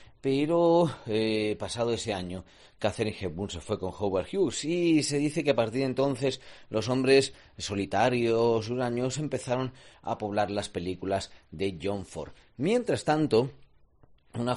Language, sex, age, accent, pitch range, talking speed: Spanish, male, 40-59, Spanish, 105-145 Hz, 150 wpm